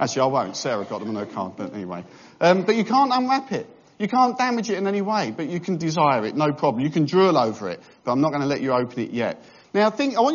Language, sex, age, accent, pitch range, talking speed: English, male, 50-69, British, 145-220 Hz, 290 wpm